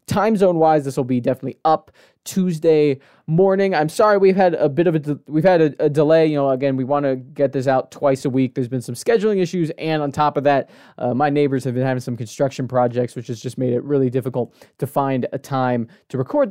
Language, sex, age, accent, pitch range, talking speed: English, male, 20-39, American, 135-175 Hz, 245 wpm